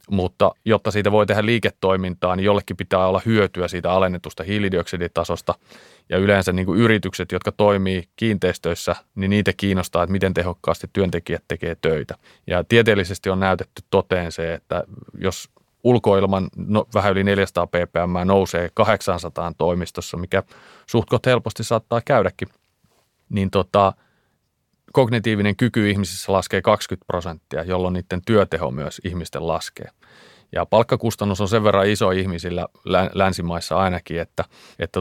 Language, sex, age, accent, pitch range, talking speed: Finnish, male, 30-49, native, 90-105 Hz, 130 wpm